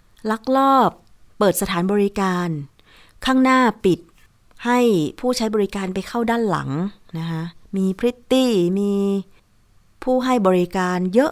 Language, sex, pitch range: Thai, female, 160-205 Hz